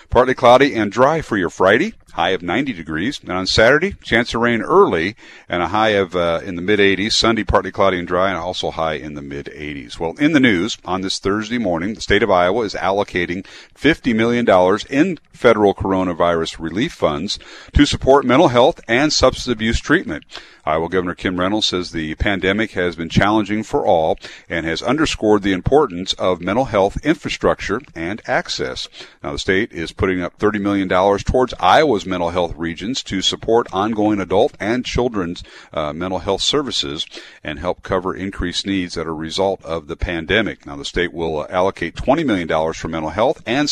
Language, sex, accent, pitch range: English, male, American, 85-105 Hz